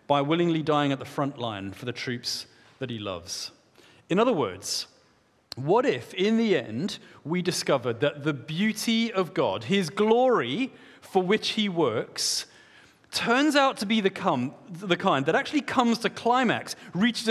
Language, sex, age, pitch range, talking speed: English, male, 40-59, 130-190 Hz, 165 wpm